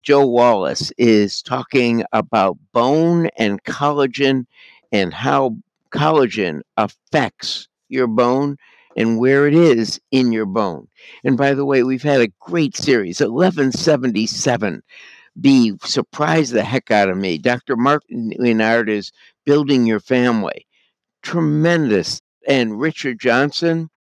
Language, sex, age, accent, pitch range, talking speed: English, male, 60-79, American, 125-150 Hz, 120 wpm